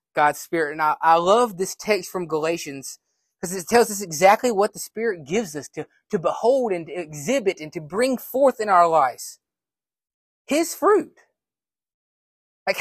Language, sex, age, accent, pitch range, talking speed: English, male, 20-39, American, 180-245 Hz, 170 wpm